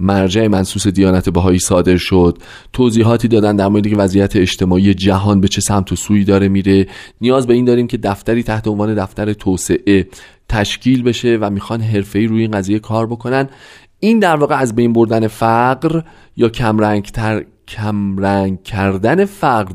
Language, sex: Persian, male